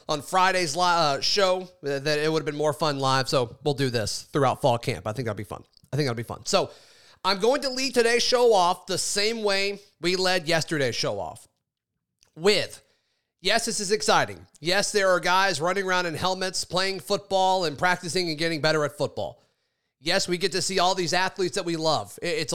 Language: English